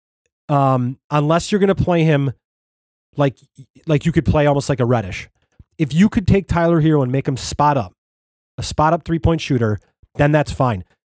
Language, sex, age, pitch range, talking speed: English, male, 30-49, 120-155 Hz, 185 wpm